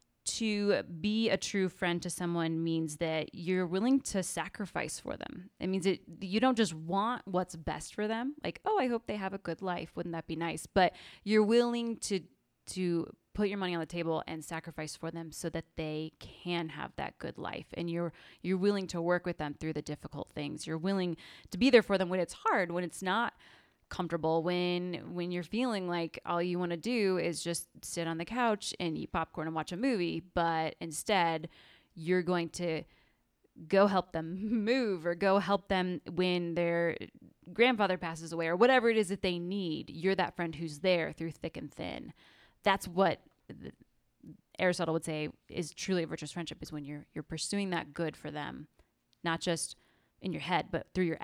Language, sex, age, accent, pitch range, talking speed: English, female, 20-39, American, 165-195 Hz, 200 wpm